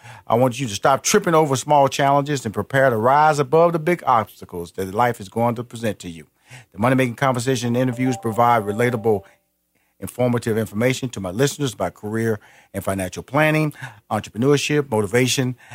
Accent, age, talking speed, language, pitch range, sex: American, 40-59, 170 wpm, English, 115-165 Hz, male